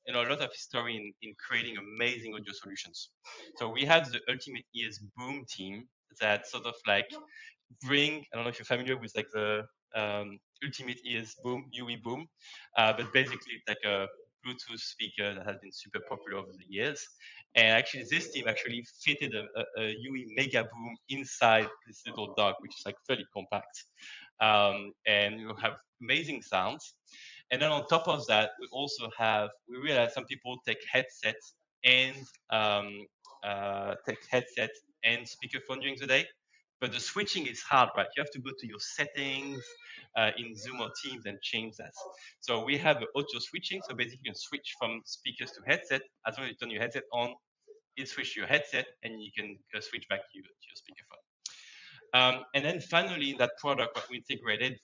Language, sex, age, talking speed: English, male, 20-39, 190 wpm